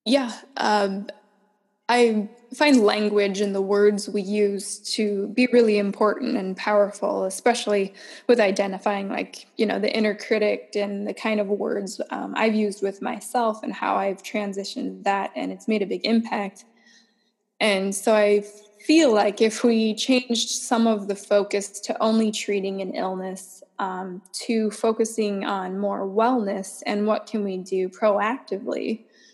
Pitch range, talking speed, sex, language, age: 195-225 Hz, 155 wpm, female, English, 10-29